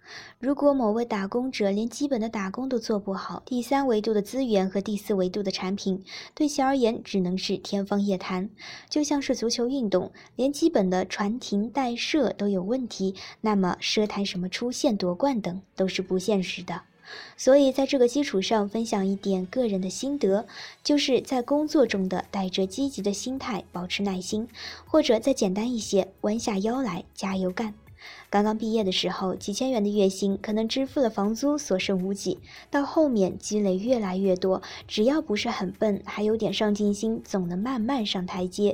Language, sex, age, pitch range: Chinese, male, 20-39, 195-245 Hz